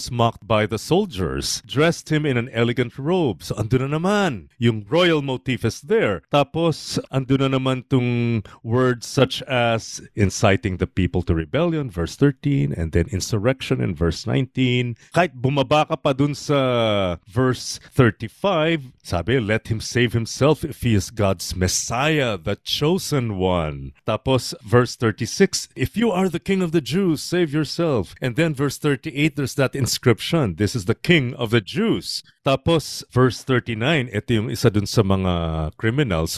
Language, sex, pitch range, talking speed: Filipino, male, 110-155 Hz, 160 wpm